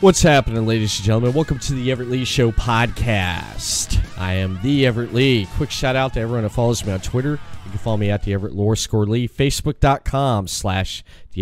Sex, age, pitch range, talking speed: male, 20-39, 100-125 Hz, 205 wpm